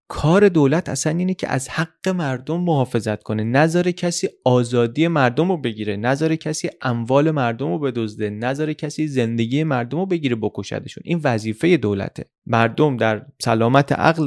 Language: Persian